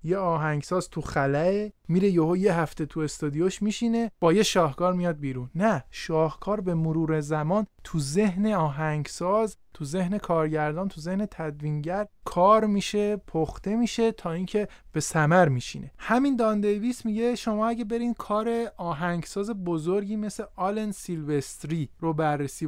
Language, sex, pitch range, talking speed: Persian, male, 150-205 Hz, 140 wpm